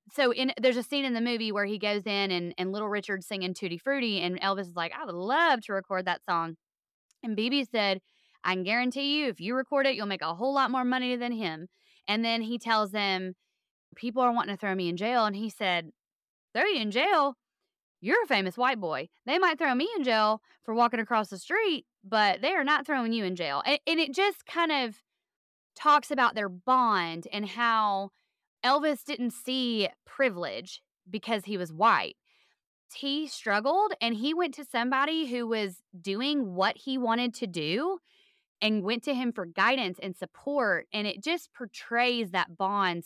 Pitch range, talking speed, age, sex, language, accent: 195-265 Hz, 200 wpm, 20-39, female, English, American